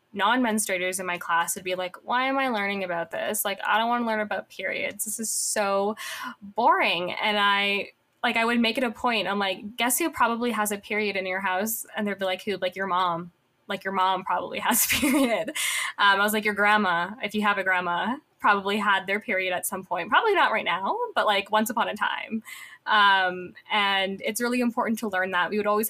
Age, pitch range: 10-29, 185-220 Hz